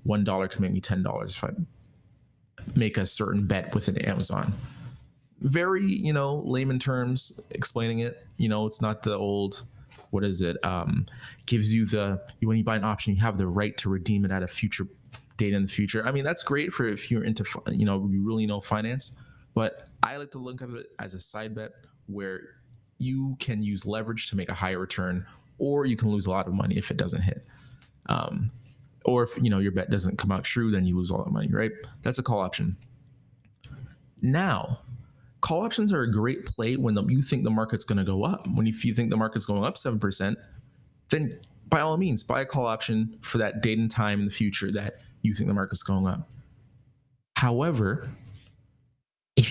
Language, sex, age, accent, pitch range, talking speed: English, male, 20-39, American, 100-130 Hz, 205 wpm